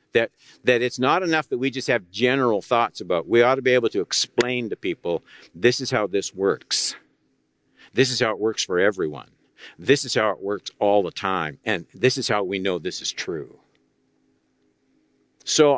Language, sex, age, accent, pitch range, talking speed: English, male, 60-79, American, 90-125 Hz, 195 wpm